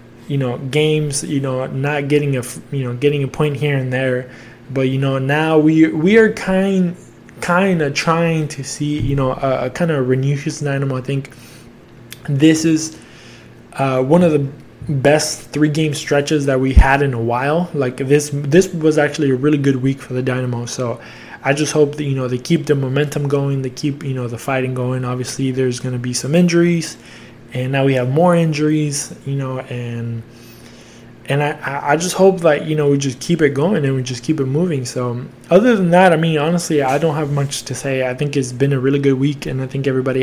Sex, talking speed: male, 220 wpm